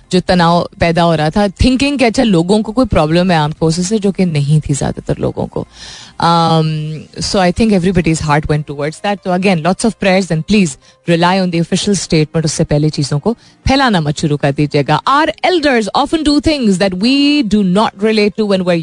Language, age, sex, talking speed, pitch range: Hindi, 30-49, female, 205 wpm, 160-215 Hz